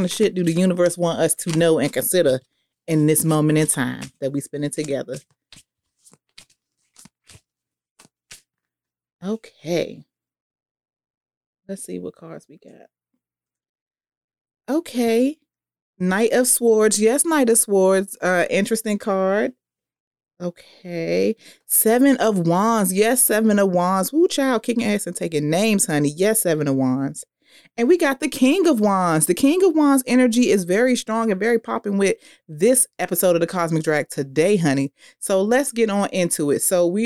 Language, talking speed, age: English, 150 wpm, 30-49